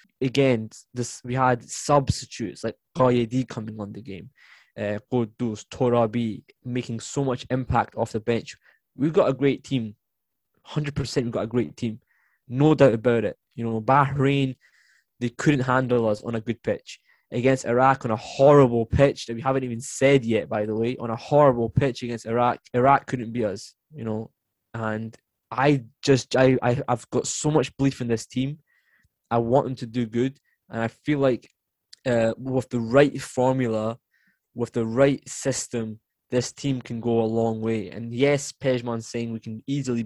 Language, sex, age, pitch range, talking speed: English, male, 10-29, 115-135 Hz, 180 wpm